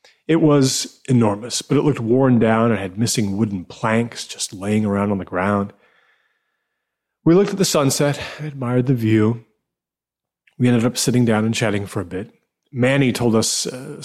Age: 30-49